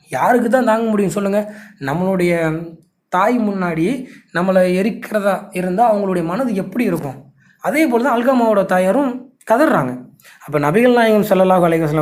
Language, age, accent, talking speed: Tamil, 20-39, native, 130 wpm